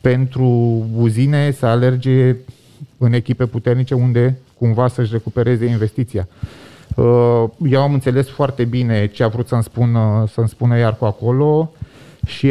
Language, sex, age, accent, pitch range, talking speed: Romanian, male, 30-49, native, 120-135 Hz, 130 wpm